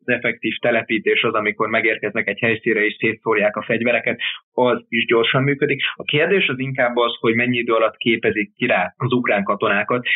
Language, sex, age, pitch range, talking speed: Hungarian, male, 20-39, 105-125 Hz, 185 wpm